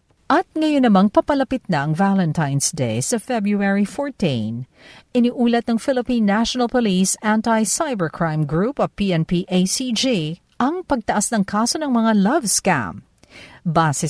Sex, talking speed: female, 130 wpm